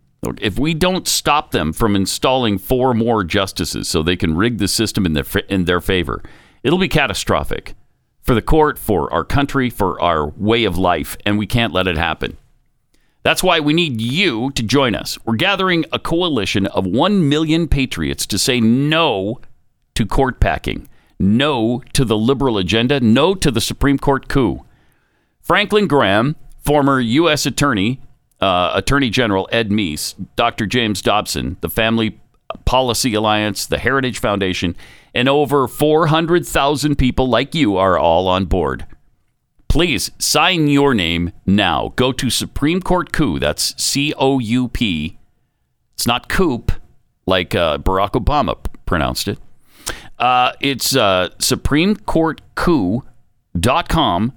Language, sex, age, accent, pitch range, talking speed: English, male, 50-69, American, 100-140 Hz, 140 wpm